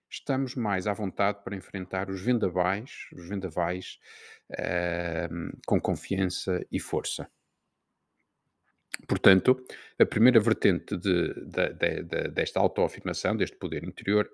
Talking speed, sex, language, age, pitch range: 120 wpm, male, Portuguese, 50-69, 95-110 Hz